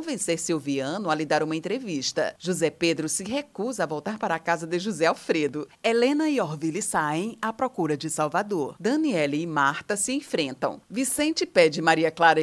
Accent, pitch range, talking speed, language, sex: Brazilian, 155-195 Hz, 175 wpm, Portuguese, female